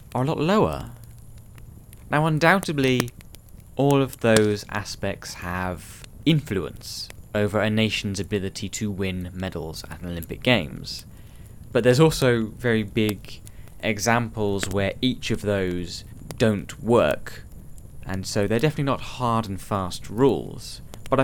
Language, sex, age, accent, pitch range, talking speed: English, male, 20-39, British, 100-125 Hz, 125 wpm